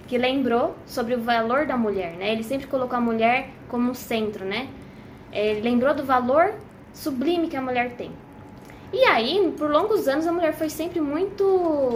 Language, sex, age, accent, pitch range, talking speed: Portuguese, female, 10-29, Brazilian, 235-310 Hz, 180 wpm